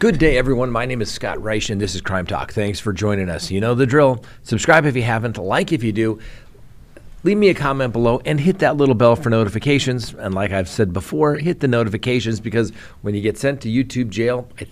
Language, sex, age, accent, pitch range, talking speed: English, male, 40-59, American, 105-130 Hz, 235 wpm